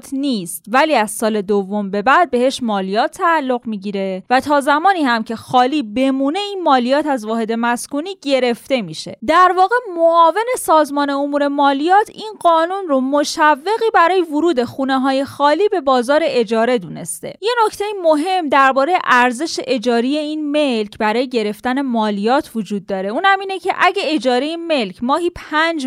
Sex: female